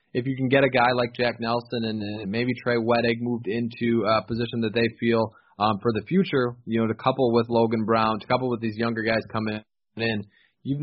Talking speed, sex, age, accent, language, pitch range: 225 wpm, male, 20-39, American, English, 110-120 Hz